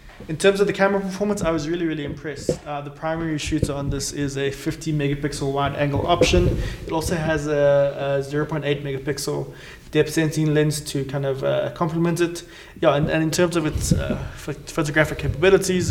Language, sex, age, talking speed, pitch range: English, male, 20-39, 190 wpm, 140-160 Hz